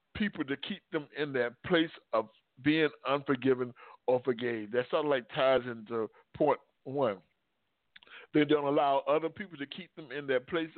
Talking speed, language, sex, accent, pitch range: 175 wpm, English, male, American, 130-160 Hz